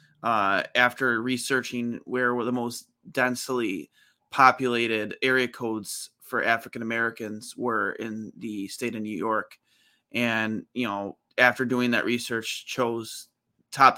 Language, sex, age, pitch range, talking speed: English, male, 20-39, 115-130 Hz, 125 wpm